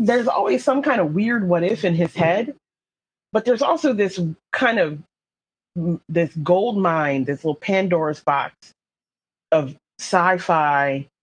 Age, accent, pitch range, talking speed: 30-49, American, 140-195 Hz, 140 wpm